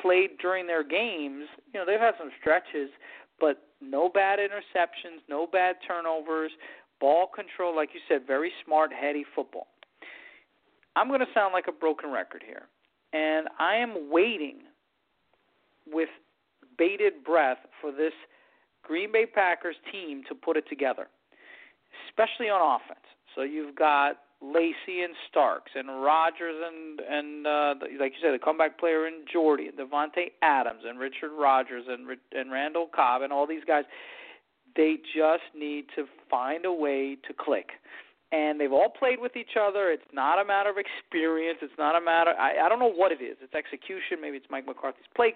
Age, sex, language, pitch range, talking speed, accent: 40-59, male, English, 145-195 Hz, 170 wpm, American